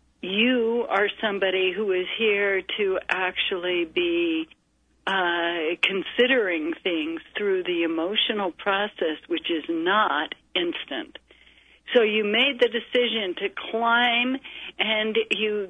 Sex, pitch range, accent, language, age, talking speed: female, 195-265 Hz, American, English, 60-79, 110 wpm